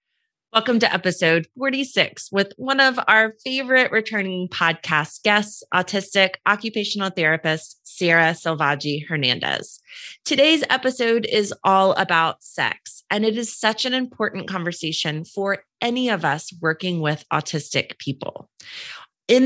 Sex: female